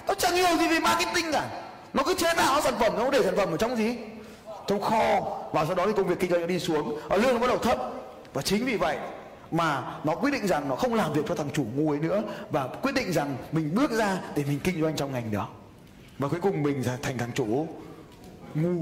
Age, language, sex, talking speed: 20-39, Vietnamese, male, 250 wpm